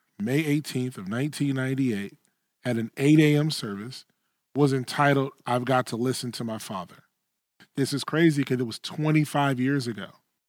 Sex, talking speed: male, 155 wpm